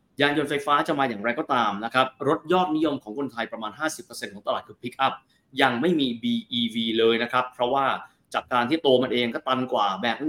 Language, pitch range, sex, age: Thai, 120-170 Hz, male, 20-39